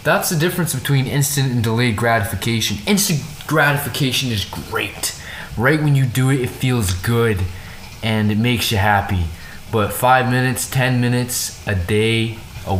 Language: English